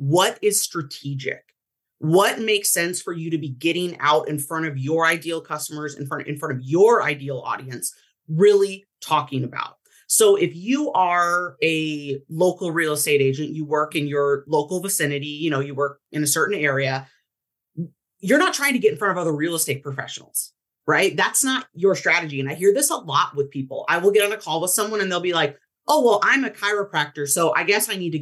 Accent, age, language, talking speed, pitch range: American, 30-49, English, 215 wpm, 145-190 Hz